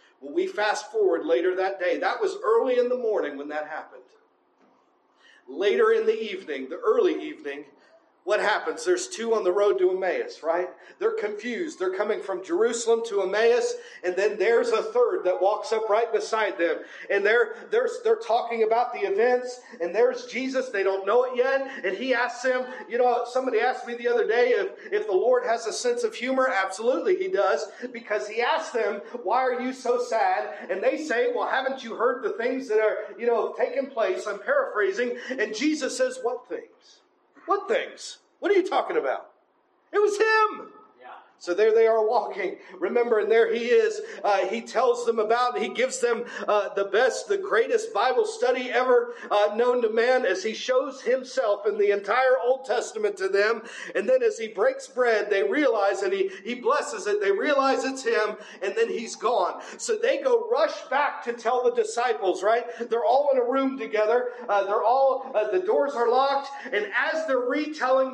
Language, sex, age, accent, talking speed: English, male, 40-59, American, 195 wpm